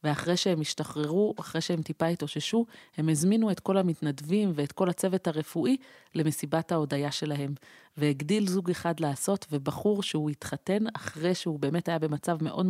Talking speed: 150 wpm